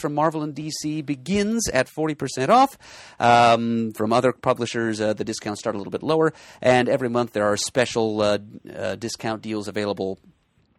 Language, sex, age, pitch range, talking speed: English, male, 30-49, 100-125 Hz, 185 wpm